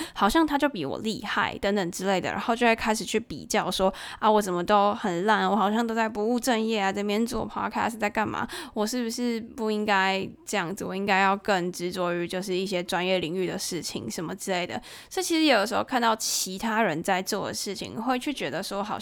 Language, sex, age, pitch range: Chinese, female, 10-29, 190-240 Hz